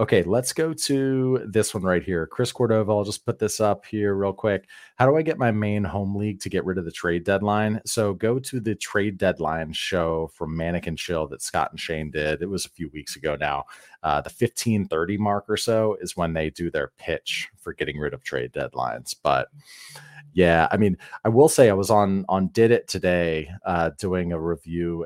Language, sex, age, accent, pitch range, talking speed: English, male, 30-49, American, 90-115 Hz, 220 wpm